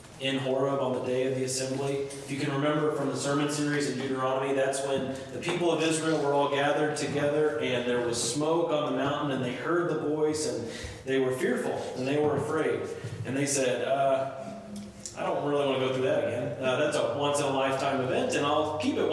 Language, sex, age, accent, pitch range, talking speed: English, male, 30-49, American, 125-150 Hz, 225 wpm